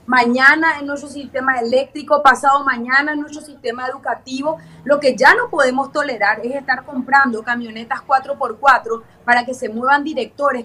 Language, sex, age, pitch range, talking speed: Spanish, female, 30-49, 255-300 Hz, 150 wpm